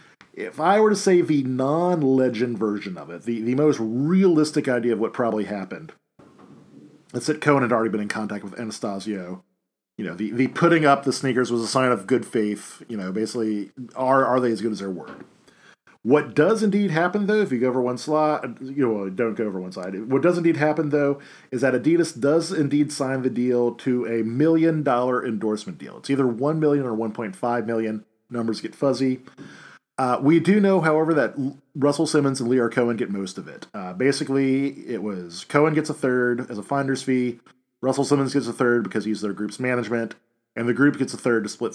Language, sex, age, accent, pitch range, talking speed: English, male, 40-59, American, 115-150 Hz, 215 wpm